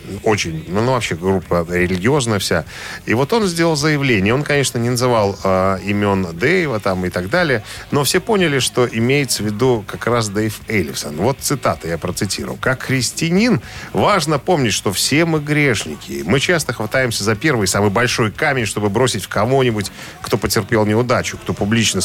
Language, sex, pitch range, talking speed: Russian, male, 100-135 Hz, 170 wpm